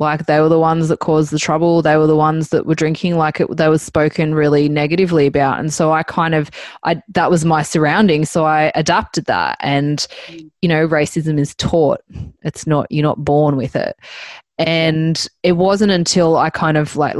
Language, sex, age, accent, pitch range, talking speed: English, female, 20-39, Australian, 155-175 Hz, 215 wpm